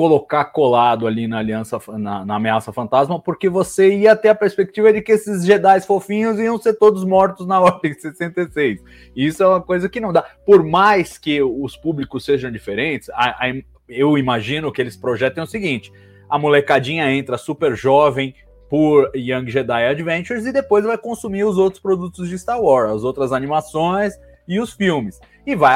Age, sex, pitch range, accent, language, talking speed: 20-39, male, 135-195 Hz, Brazilian, Portuguese, 180 wpm